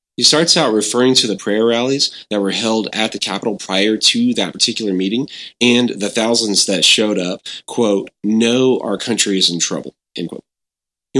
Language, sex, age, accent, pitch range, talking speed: English, male, 30-49, American, 90-115 Hz, 190 wpm